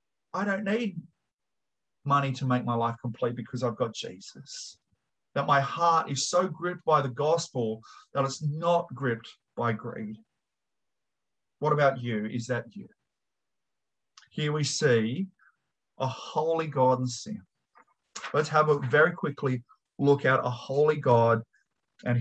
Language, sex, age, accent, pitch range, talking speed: English, male, 30-49, Australian, 130-175 Hz, 145 wpm